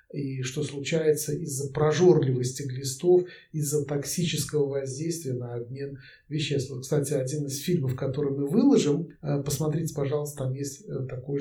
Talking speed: 125 wpm